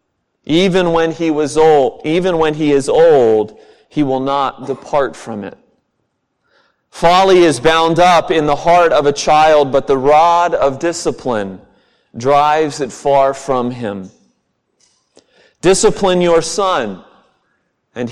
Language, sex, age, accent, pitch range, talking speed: English, male, 40-59, American, 130-165 Hz, 135 wpm